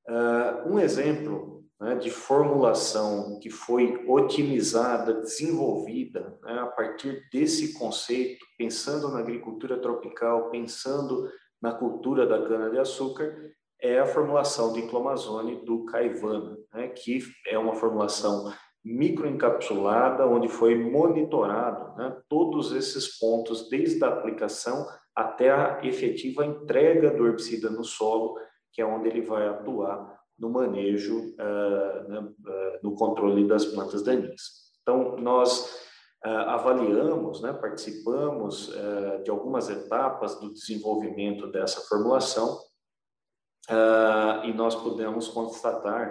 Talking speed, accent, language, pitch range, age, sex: 115 wpm, Brazilian, Portuguese, 110-125 Hz, 40-59, male